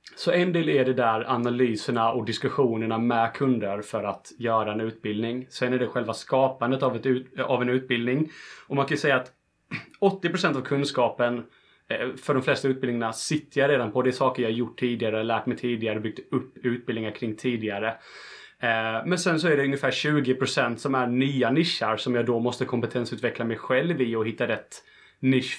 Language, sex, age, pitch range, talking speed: Swedish, male, 30-49, 115-130 Hz, 180 wpm